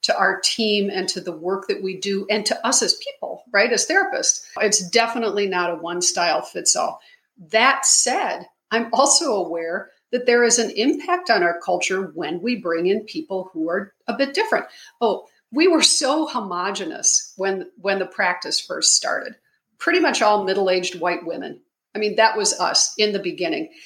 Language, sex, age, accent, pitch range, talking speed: English, female, 50-69, American, 185-265 Hz, 185 wpm